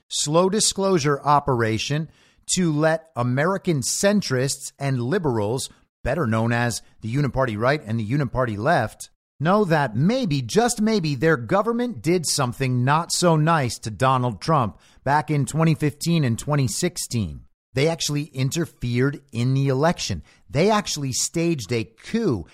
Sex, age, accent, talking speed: male, 40-59, American, 135 wpm